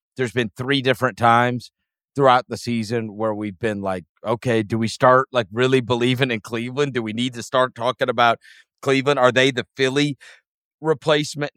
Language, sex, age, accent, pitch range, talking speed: English, male, 40-59, American, 110-135 Hz, 175 wpm